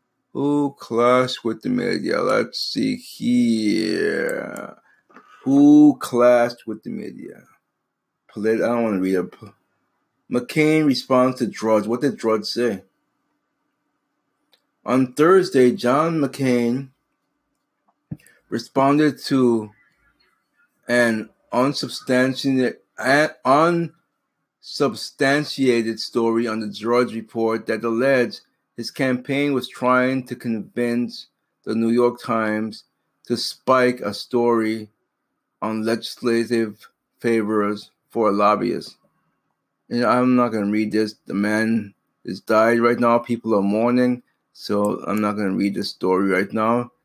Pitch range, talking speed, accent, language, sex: 110-130 Hz, 110 wpm, American, English, male